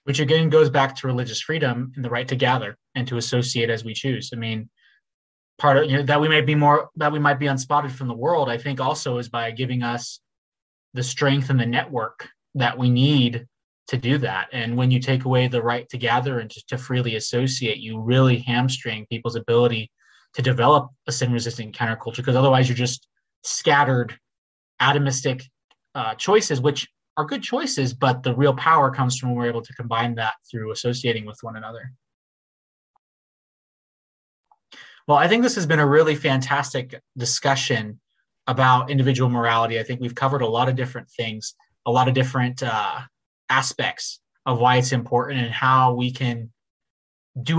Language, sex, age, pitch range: English, male, 20-39, 120-135 Hz